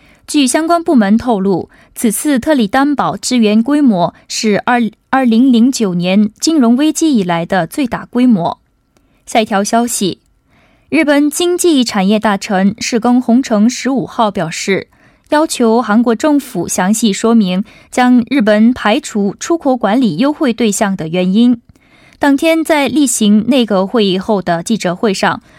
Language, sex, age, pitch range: Korean, female, 20-39, 205-265 Hz